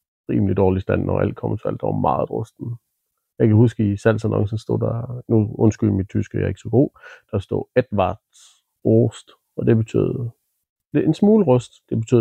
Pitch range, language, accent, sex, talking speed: 110-125 Hz, Danish, native, male, 195 wpm